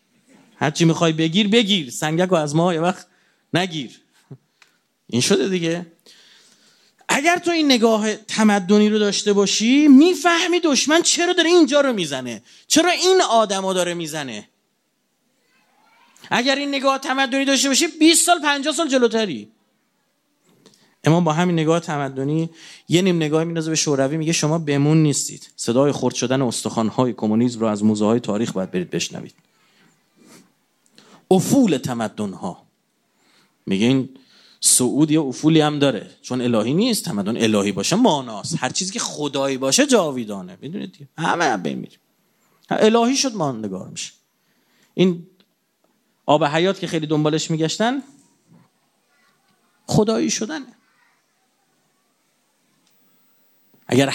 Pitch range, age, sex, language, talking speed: 140-235 Hz, 30-49, male, Persian, 125 wpm